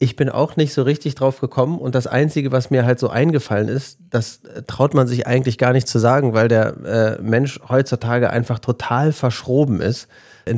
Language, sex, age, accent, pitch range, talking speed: German, male, 40-59, German, 115-135 Hz, 205 wpm